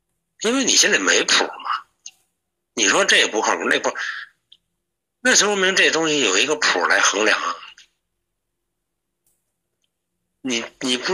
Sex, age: male, 60-79